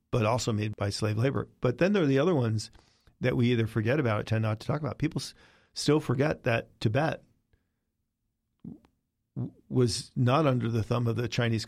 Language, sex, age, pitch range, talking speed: English, male, 40-59, 110-130 Hz, 200 wpm